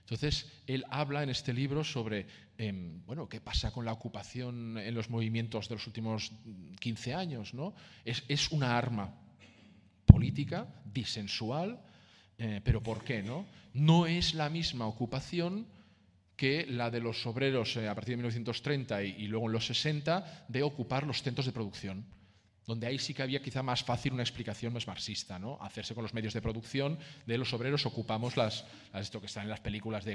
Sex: male